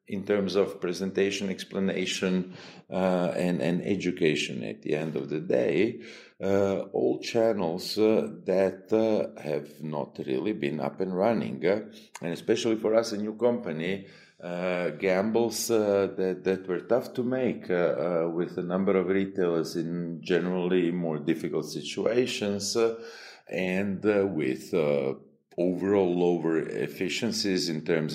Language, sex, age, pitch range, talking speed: English, male, 50-69, 85-100 Hz, 145 wpm